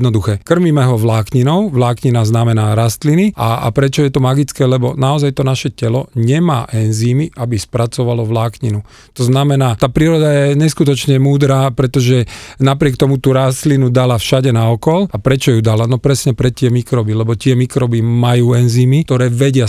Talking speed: 165 wpm